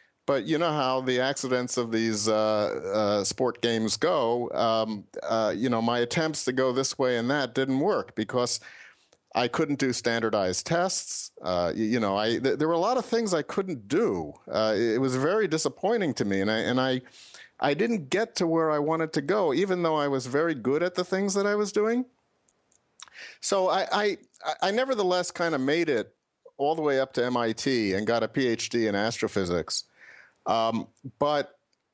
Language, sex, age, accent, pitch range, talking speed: English, male, 50-69, American, 115-160 Hz, 195 wpm